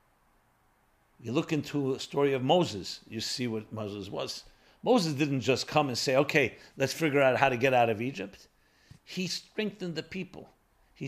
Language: English